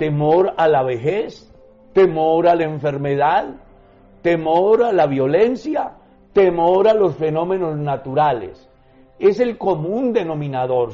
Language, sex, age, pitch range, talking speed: Spanish, male, 60-79, 150-210 Hz, 115 wpm